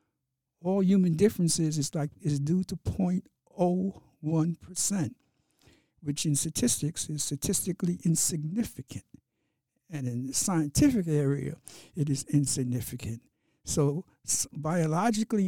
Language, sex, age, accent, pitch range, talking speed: English, male, 60-79, American, 125-165 Hz, 95 wpm